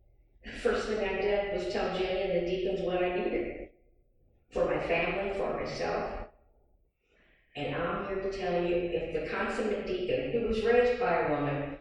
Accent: American